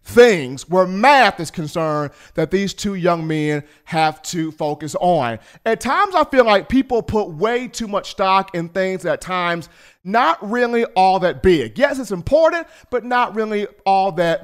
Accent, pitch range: American, 180-255 Hz